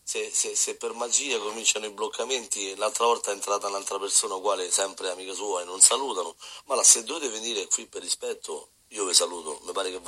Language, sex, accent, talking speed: Italian, male, native, 215 wpm